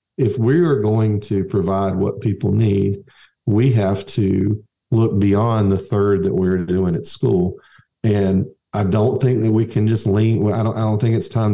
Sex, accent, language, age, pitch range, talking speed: male, American, English, 50-69, 95-120 Hz, 190 wpm